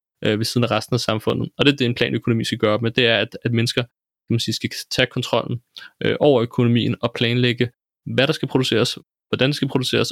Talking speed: 235 wpm